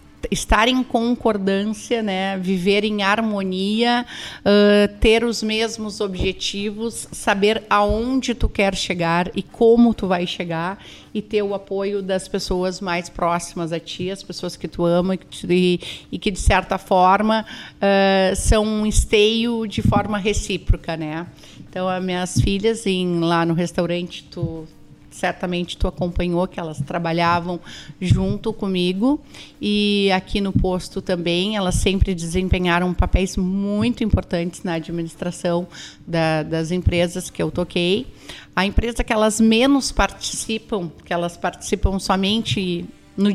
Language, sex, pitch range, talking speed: Portuguese, female, 175-205 Hz, 135 wpm